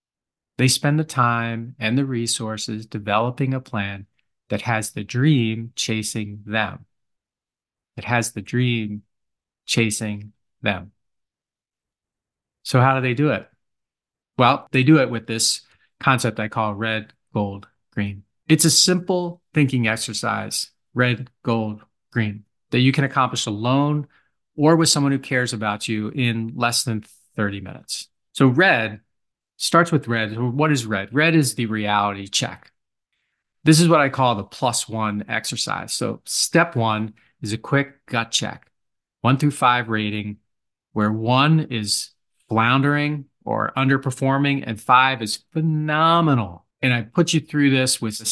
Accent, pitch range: American, 110-135 Hz